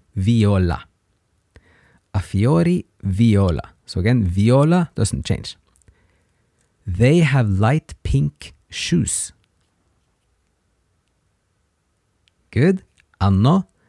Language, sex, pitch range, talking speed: English, male, 90-125 Hz, 70 wpm